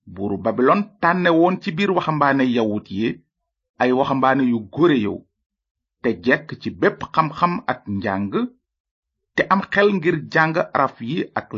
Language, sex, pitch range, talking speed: French, male, 110-175 Hz, 120 wpm